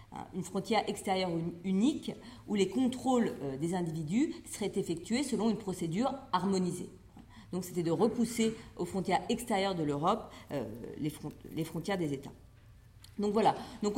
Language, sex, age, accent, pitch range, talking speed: French, female, 40-59, French, 160-220 Hz, 145 wpm